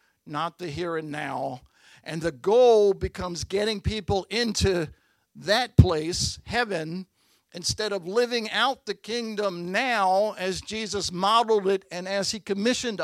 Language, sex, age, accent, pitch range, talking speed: English, male, 50-69, American, 120-195 Hz, 140 wpm